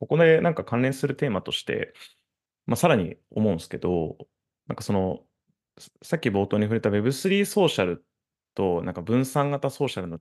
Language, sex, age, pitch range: Japanese, male, 20-39, 100-150 Hz